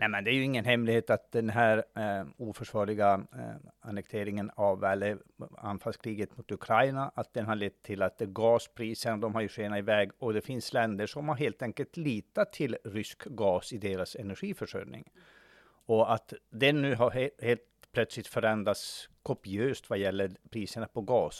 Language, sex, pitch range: Swedish, male, 105-125 Hz